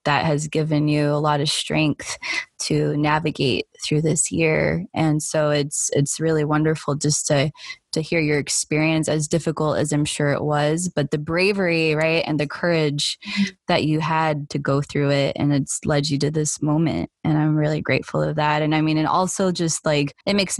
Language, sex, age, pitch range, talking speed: English, female, 20-39, 150-170 Hz, 200 wpm